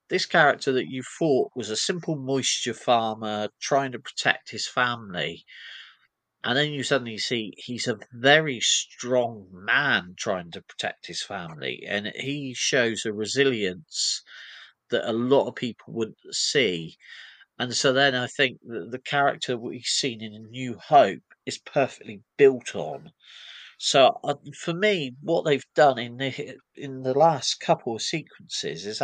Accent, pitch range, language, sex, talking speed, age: British, 110-135 Hz, English, male, 155 wpm, 40-59